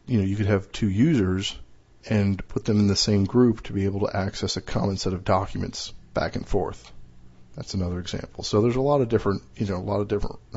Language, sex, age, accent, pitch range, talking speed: English, male, 40-59, American, 100-120 Hz, 240 wpm